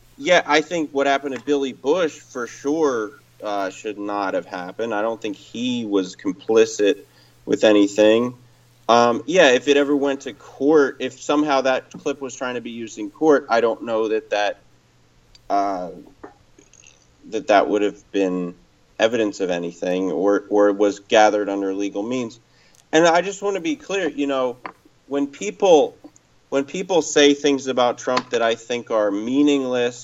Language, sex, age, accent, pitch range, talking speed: English, male, 30-49, American, 110-145 Hz, 170 wpm